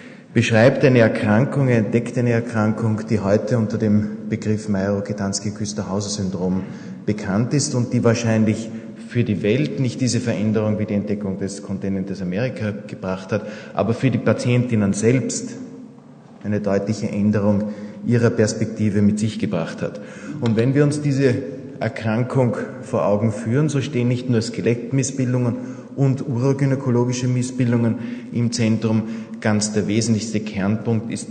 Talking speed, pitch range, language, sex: 130 wpm, 105-125 Hz, German, male